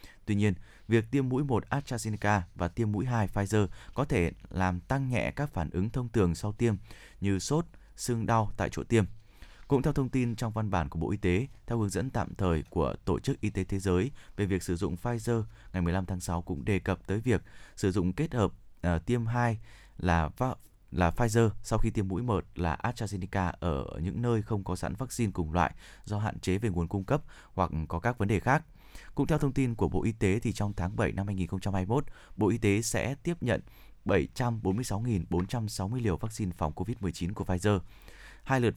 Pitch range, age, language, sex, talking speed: 90-115 Hz, 20-39, Vietnamese, male, 210 wpm